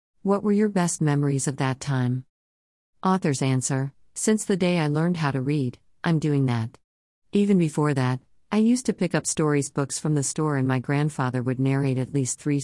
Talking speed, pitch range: 200 wpm, 130-180 Hz